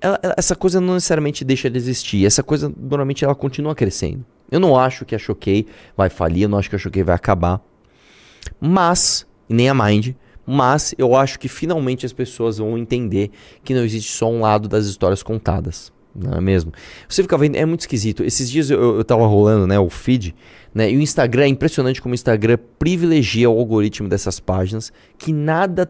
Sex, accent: male, Brazilian